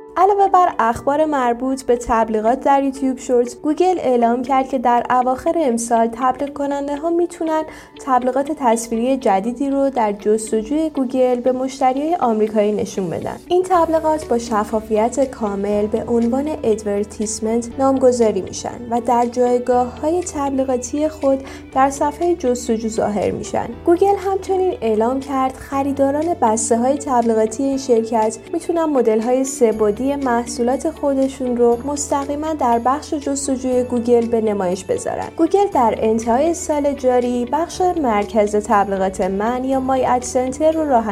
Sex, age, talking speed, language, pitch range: female, 10-29, 125 wpm, Persian, 230-290 Hz